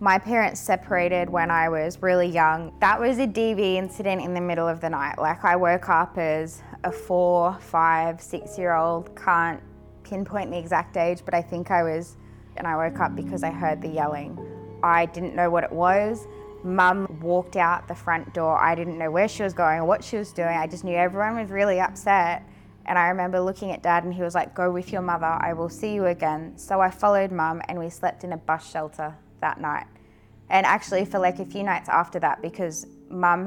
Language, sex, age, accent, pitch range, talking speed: English, female, 20-39, Australian, 160-190 Hz, 220 wpm